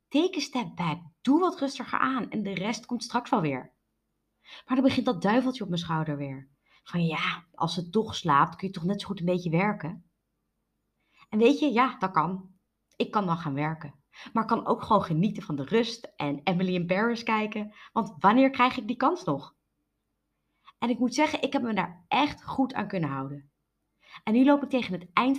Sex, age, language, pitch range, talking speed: female, 20-39, Dutch, 175-250 Hz, 215 wpm